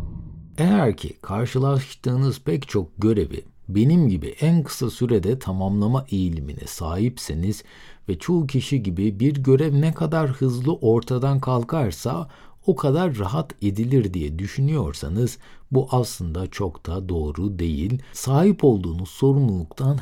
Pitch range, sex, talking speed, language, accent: 95-145 Hz, male, 120 wpm, Turkish, native